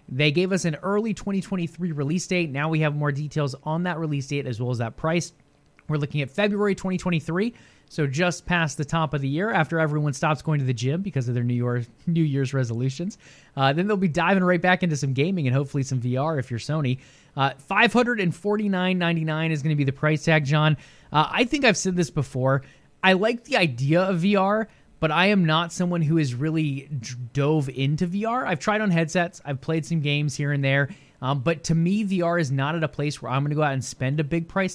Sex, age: male, 20-39